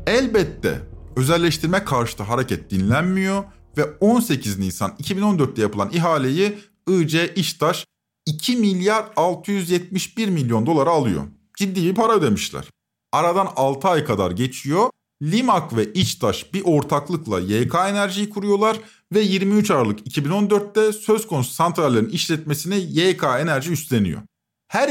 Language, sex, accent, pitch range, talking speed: Turkish, male, native, 130-195 Hz, 115 wpm